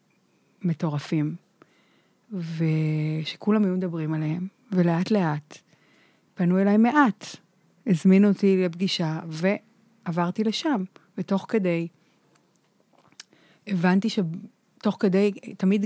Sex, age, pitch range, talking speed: female, 30-49, 170-205 Hz, 80 wpm